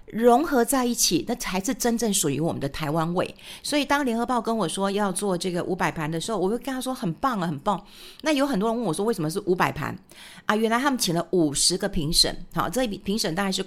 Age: 50-69